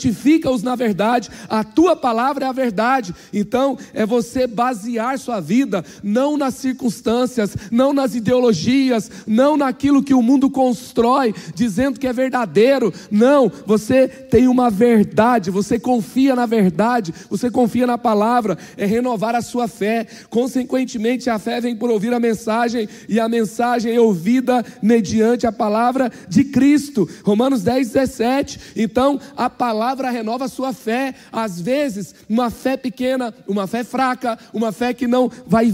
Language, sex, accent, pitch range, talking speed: Portuguese, male, Brazilian, 225-265 Hz, 150 wpm